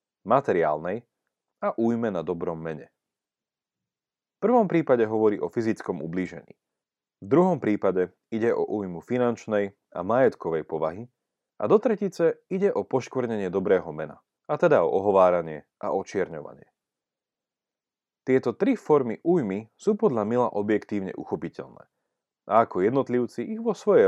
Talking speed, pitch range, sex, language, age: 130 wpm, 100-160 Hz, male, Slovak, 30-49